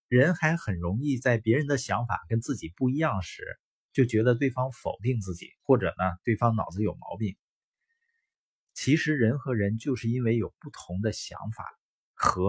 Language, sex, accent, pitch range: Chinese, male, native, 100-145 Hz